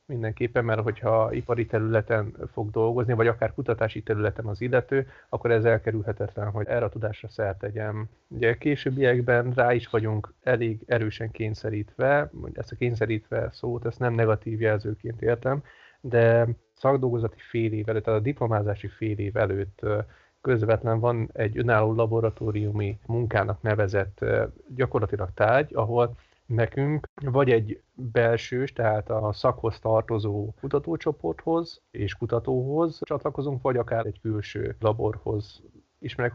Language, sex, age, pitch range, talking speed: Hungarian, male, 30-49, 110-125 Hz, 125 wpm